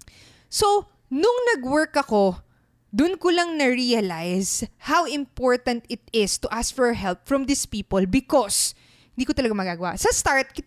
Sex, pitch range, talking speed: female, 200-295 Hz, 145 wpm